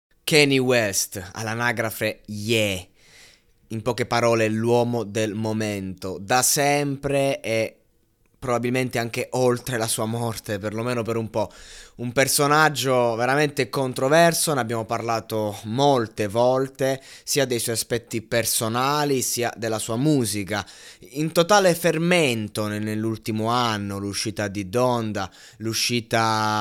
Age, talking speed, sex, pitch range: 20-39, 115 wpm, male, 110-135 Hz